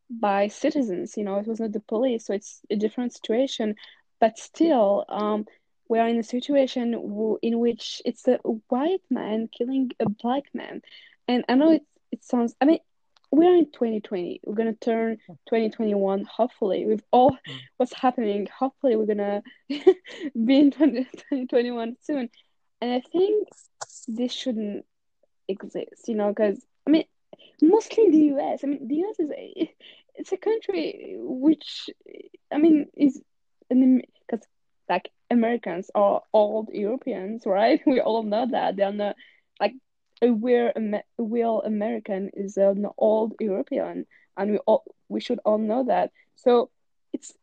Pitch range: 215-285 Hz